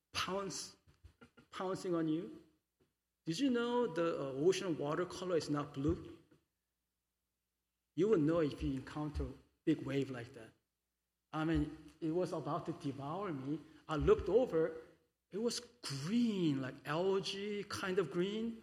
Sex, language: male, English